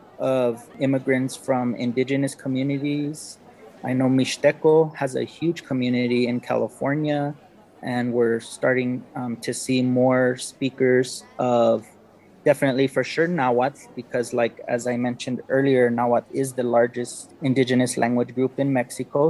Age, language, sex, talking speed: 20-39, English, male, 130 wpm